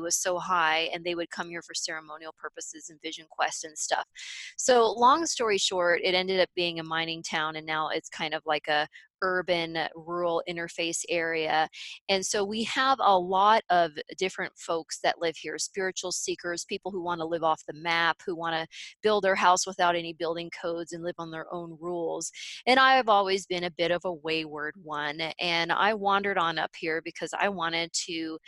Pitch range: 160-190 Hz